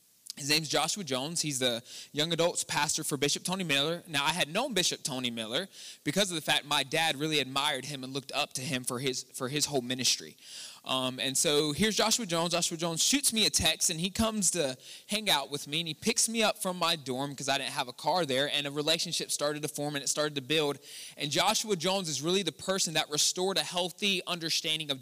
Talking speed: 240 wpm